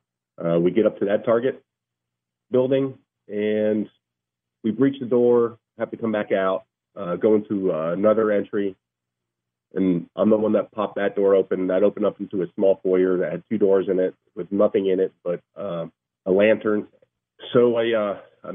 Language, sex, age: English, male, 40-59